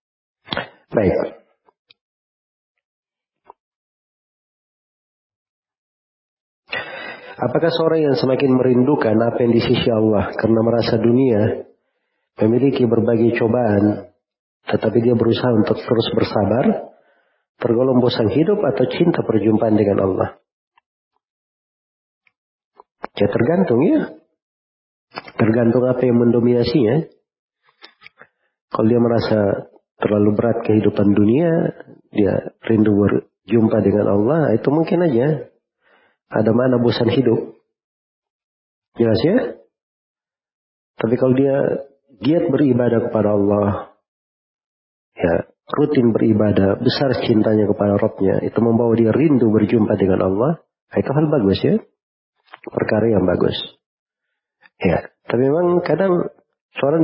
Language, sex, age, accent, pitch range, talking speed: Indonesian, male, 40-59, native, 105-125 Hz, 95 wpm